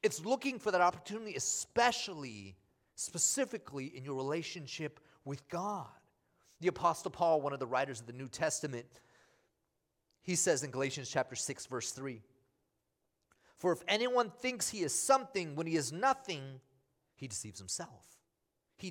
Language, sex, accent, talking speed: English, male, American, 145 wpm